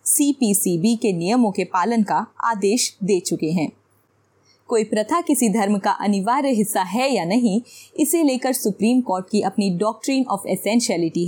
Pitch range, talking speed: 190-255 Hz, 155 wpm